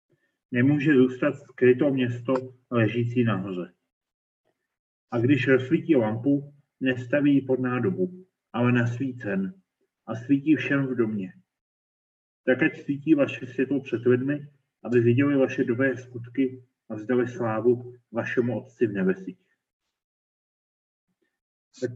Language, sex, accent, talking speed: Czech, male, native, 110 wpm